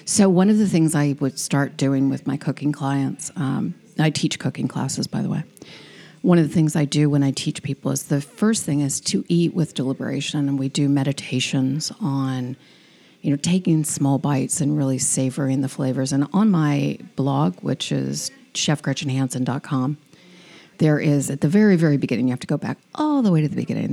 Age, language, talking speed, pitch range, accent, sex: 50-69, English, 200 wpm, 135-165 Hz, American, female